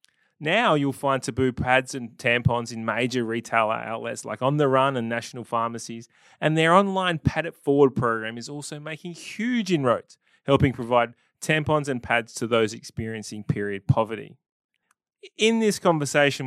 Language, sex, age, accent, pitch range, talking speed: English, male, 20-39, Australian, 115-145 Hz, 155 wpm